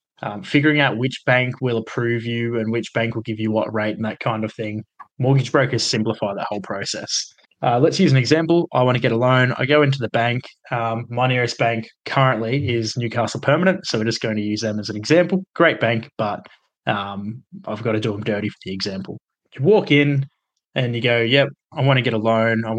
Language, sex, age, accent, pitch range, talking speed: English, male, 20-39, Australian, 110-130 Hz, 235 wpm